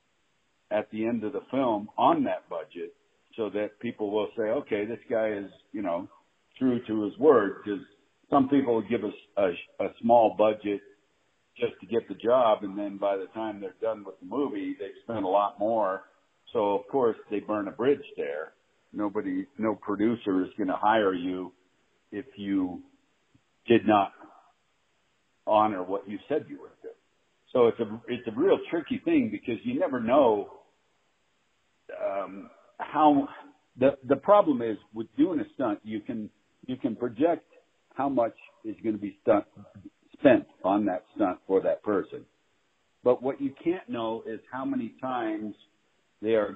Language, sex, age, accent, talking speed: English, male, 60-79, American, 170 wpm